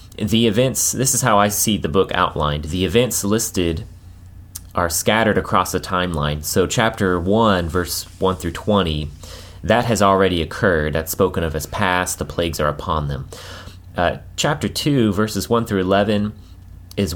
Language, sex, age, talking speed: English, male, 30-49, 165 wpm